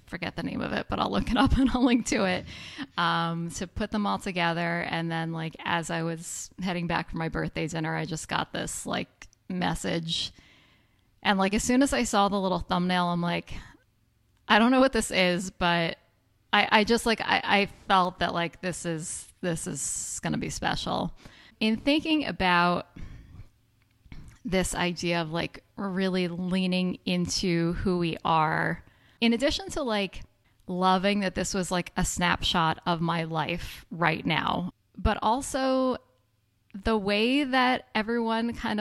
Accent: American